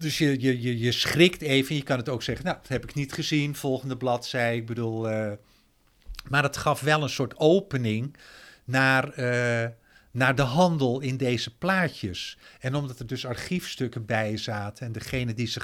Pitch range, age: 115-140 Hz, 50-69